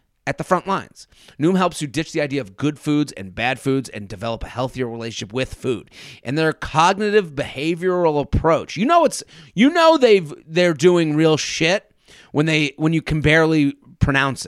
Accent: American